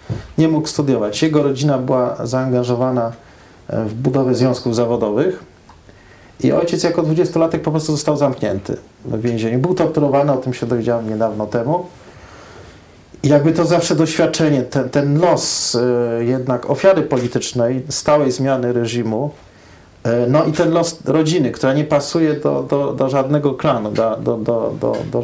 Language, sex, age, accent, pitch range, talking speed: Polish, male, 40-59, native, 120-150 Hz, 145 wpm